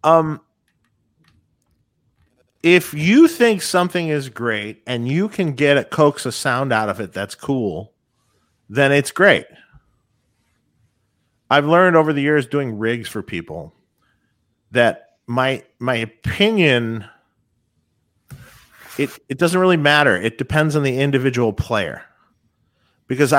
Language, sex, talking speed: English, male, 125 wpm